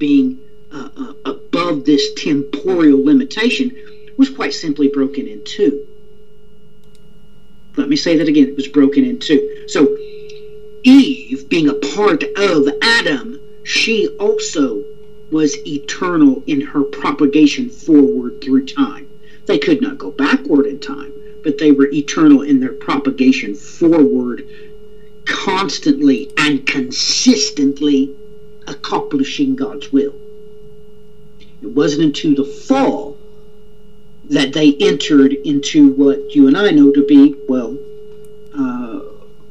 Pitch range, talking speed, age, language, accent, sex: 140-230 Hz, 120 wpm, 50-69, English, American, male